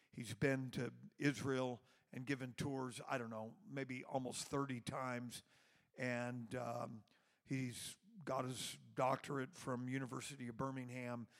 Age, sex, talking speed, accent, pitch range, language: 50-69, male, 125 wpm, American, 130-155 Hz, English